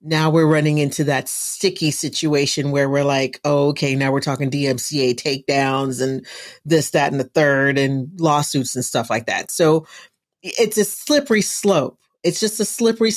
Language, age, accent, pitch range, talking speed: English, 40-59, American, 145-180 Hz, 175 wpm